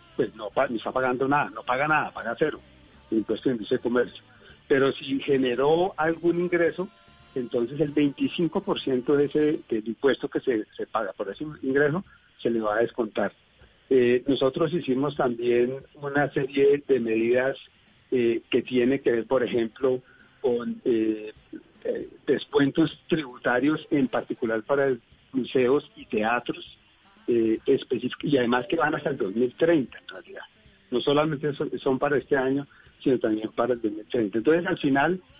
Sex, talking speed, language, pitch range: male, 155 wpm, Spanish, 120-155 Hz